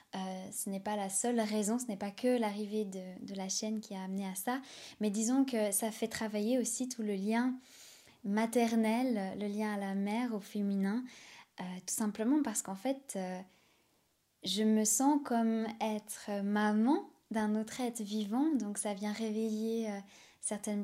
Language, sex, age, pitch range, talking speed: French, female, 10-29, 200-235 Hz, 180 wpm